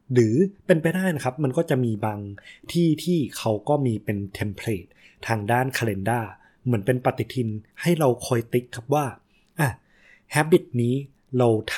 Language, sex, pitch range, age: Thai, male, 105-130 Hz, 20-39